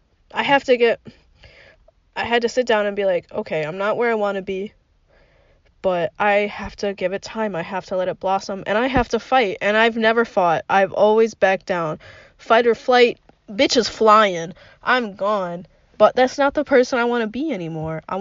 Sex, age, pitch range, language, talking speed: female, 20-39, 200-260 Hz, English, 215 wpm